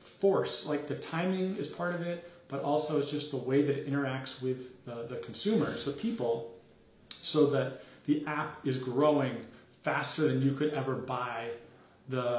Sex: male